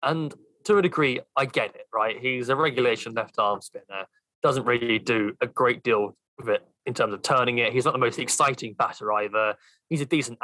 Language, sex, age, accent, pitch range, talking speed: English, male, 20-39, British, 120-150 Hz, 215 wpm